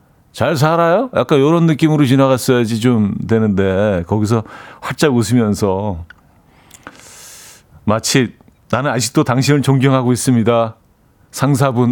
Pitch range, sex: 100-140 Hz, male